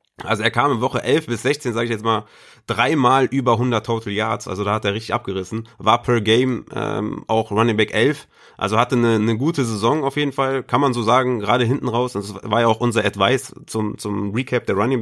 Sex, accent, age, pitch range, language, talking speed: male, German, 30-49, 110-125 Hz, German, 230 wpm